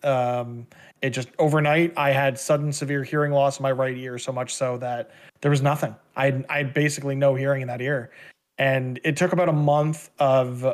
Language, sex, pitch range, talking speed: English, male, 135-160 Hz, 210 wpm